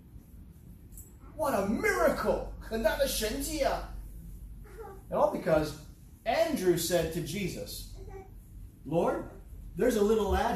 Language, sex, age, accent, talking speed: English, male, 30-49, American, 90 wpm